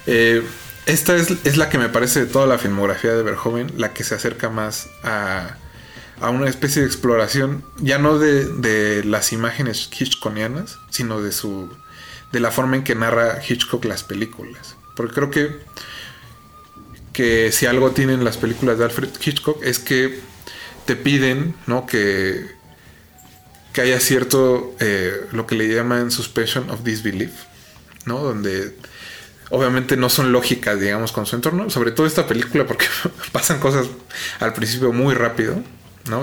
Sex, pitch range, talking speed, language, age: male, 110-130 Hz, 155 wpm, Spanish, 20-39